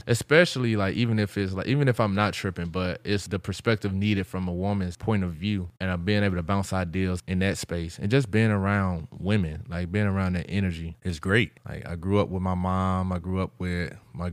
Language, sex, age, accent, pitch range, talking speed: English, male, 20-39, American, 85-100 Hz, 235 wpm